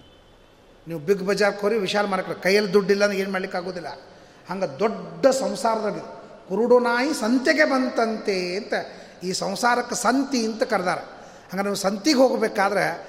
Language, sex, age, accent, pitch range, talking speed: Kannada, male, 30-49, native, 175-240 Hz, 135 wpm